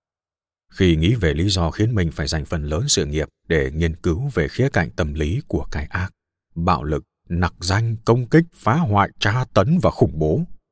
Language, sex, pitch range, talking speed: Vietnamese, male, 80-110 Hz, 205 wpm